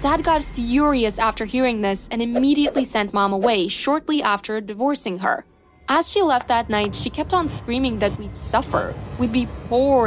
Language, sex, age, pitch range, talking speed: English, female, 20-39, 215-285 Hz, 180 wpm